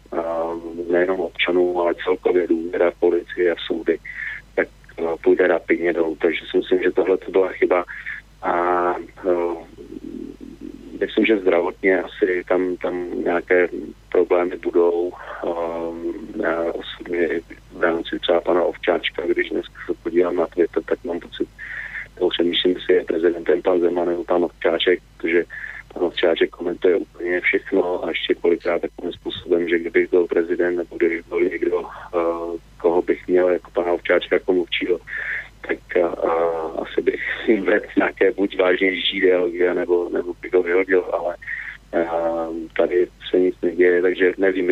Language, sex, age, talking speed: Slovak, male, 30-49, 150 wpm